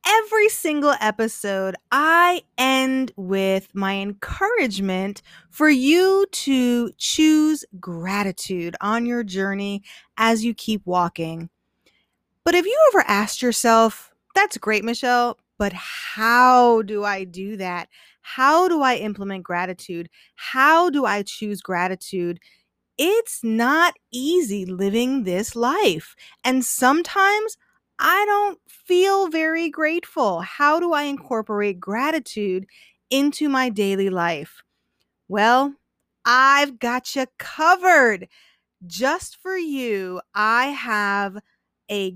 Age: 20-39